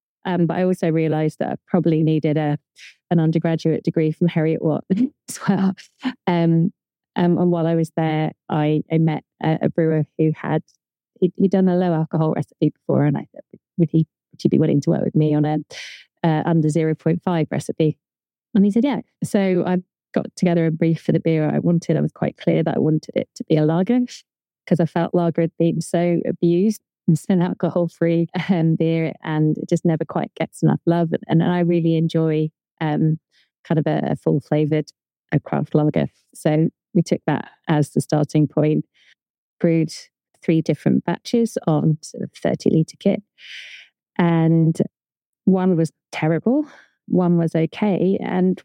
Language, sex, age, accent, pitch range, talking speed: English, female, 30-49, British, 160-180 Hz, 185 wpm